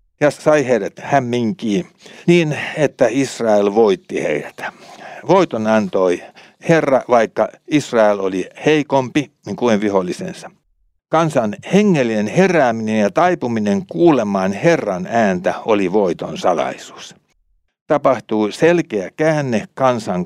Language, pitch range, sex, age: Finnish, 105-155 Hz, male, 60-79